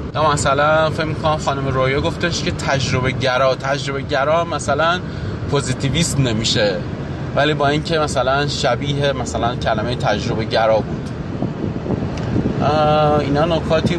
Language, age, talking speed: Persian, 30-49, 115 wpm